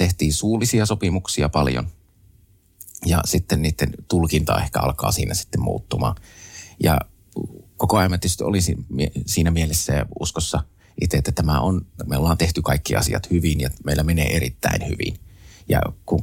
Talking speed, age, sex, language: 145 wpm, 30-49, male, Finnish